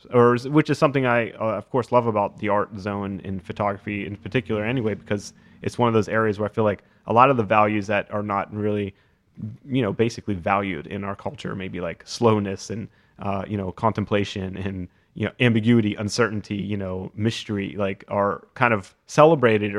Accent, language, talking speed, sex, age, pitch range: American, English, 200 wpm, male, 30-49, 100-115 Hz